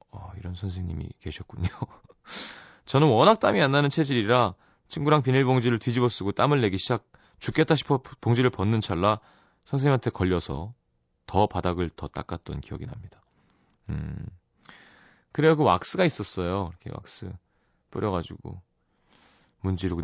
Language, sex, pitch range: Korean, male, 90-130 Hz